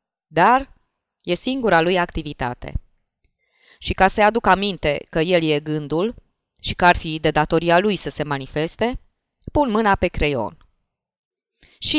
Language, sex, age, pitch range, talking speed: Romanian, female, 20-39, 160-220 Hz, 145 wpm